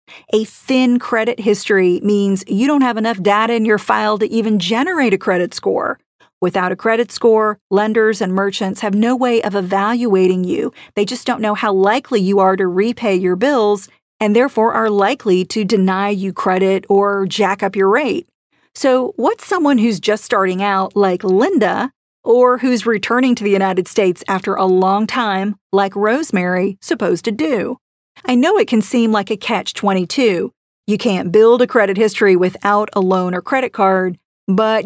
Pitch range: 195-230 Hz